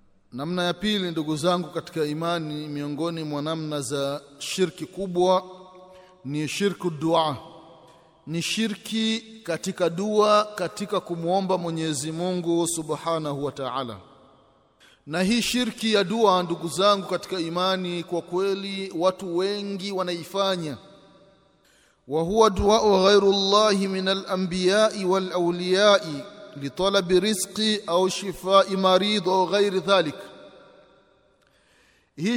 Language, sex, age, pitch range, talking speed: Swahili, male, 30-49, 170-215 Hz, 110 wpm